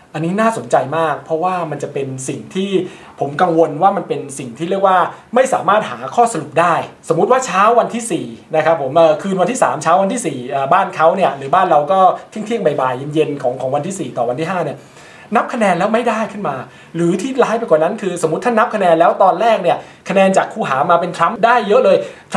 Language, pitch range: Thai, 150-195 Hz